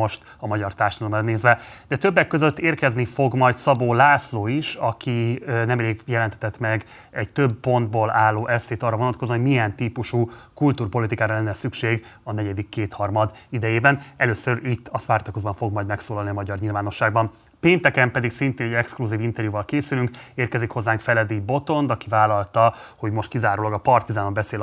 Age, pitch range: 30-49, 105-125 Hz